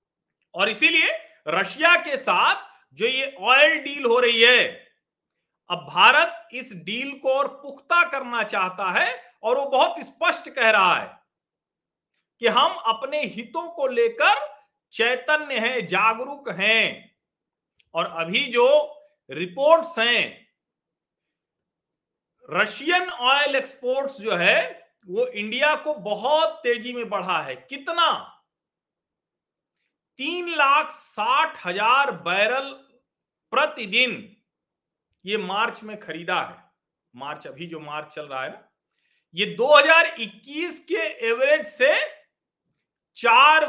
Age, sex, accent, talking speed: 50-69, male, native, 115 wpm